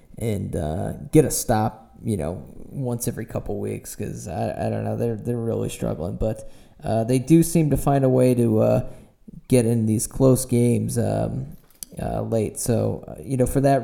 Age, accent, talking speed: 20-39, American, 195 wpm